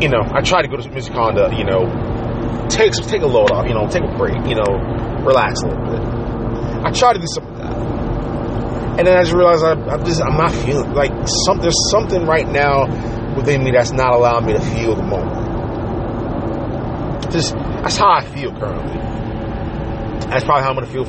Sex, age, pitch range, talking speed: male, 30-49, 115-130 Hz, 200 wpm